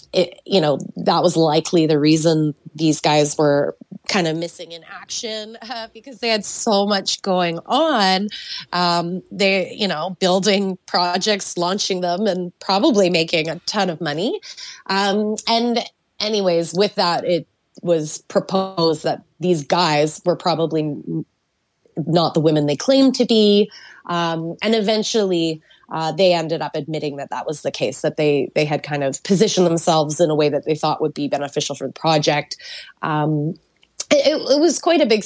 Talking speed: 165 wpm